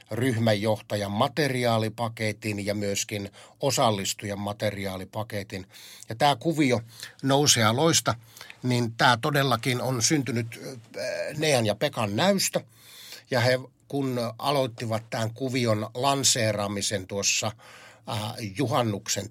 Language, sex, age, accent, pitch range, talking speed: Finnish, male, 60-79, native, 105-130 Hz, 90 wpm